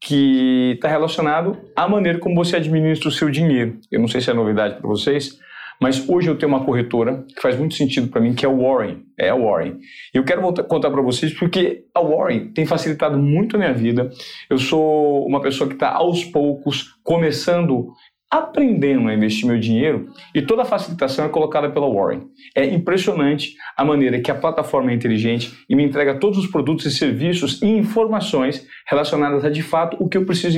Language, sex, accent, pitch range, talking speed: Portuguese, male, Brazilian, 130-170 Hz, 200 wpm